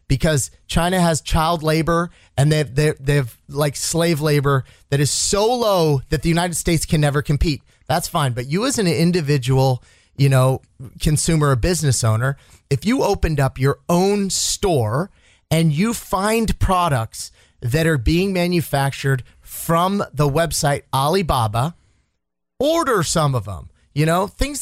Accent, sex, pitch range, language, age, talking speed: American, male, 135-175 Hz, English, 30-49, 150 wpm